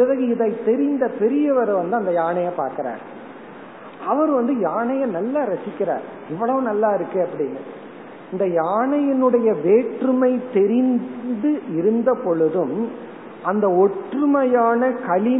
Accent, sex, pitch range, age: native, male, 205-250 Hz, 50-69